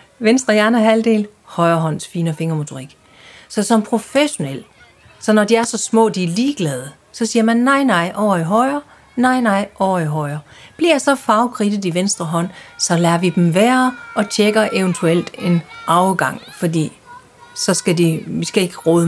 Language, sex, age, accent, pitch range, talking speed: Danish, female, 40-59, native, 180-235 Hz, 180 wpm